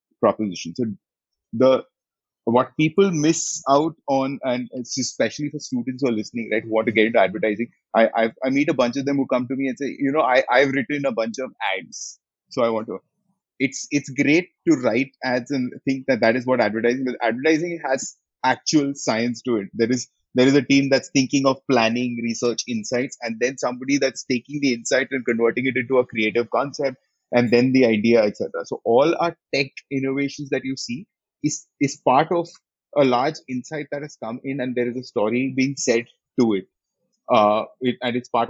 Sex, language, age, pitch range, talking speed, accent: male, English, 30-49, 120-145 Hz, 205 wpm, Indian